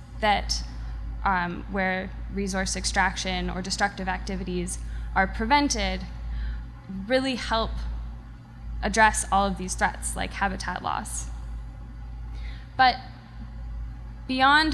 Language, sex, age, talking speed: English, female, 10-29, 90 wpm